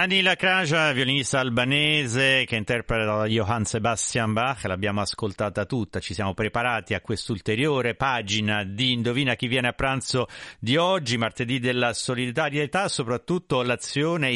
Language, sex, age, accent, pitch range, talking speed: Italian, male, 40-59, native, 105-135 Hz, 135 wpm